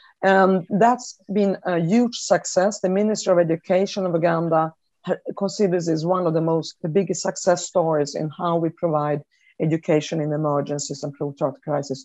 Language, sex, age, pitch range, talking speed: English, female, 50-69, 155-190 Hz, 165 wpm